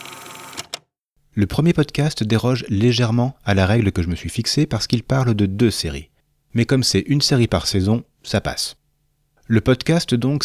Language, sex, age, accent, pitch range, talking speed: French, male, 40-59, French, 95-135 Hz, 180 wpm